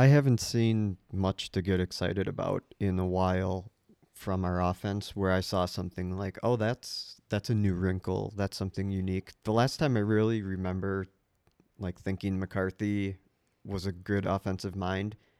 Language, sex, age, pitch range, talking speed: English, male, 40-59, 95-105 Hz, 165 wpm